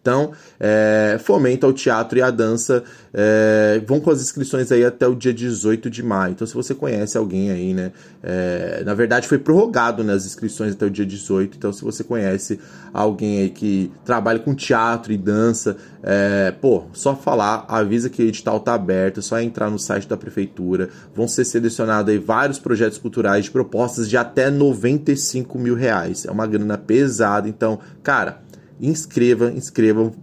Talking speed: 175 wpm